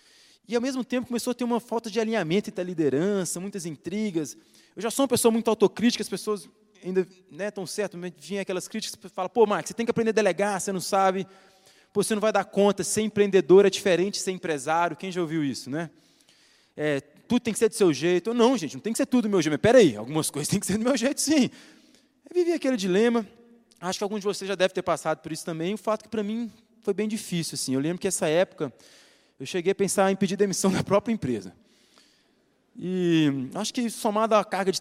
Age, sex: 20-39, male